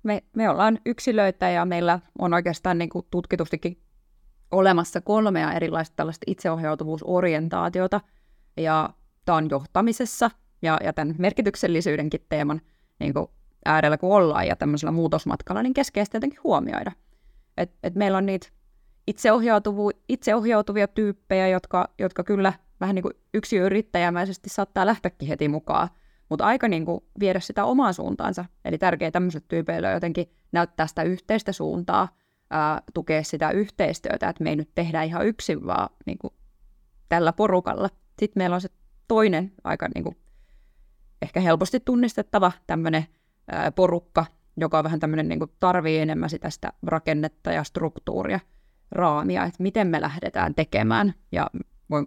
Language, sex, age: Finnish, female, 20-39